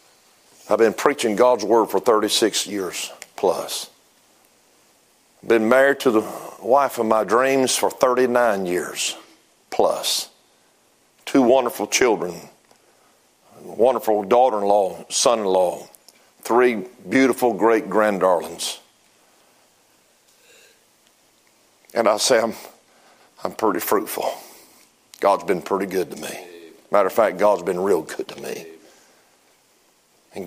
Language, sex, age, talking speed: English, male, 50-69, 105 wpm